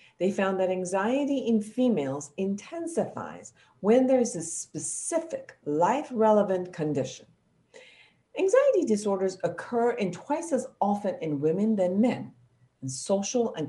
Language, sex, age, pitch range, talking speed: English, female, 50-69, 145-220 Hz, 120 wpm